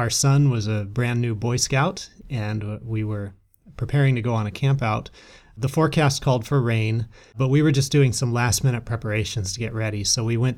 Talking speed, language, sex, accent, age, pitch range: 205 wpm, English, male, American, 30-49, 115-145 Hz